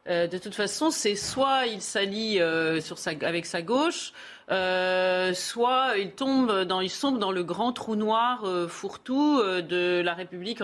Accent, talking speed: French, 170 wpm